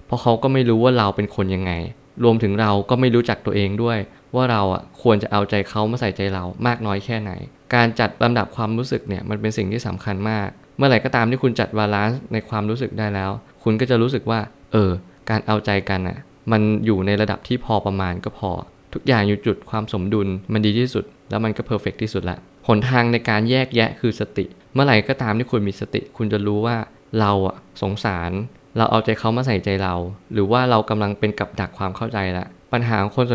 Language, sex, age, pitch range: Thai, male, 20-39, 100-120 Hz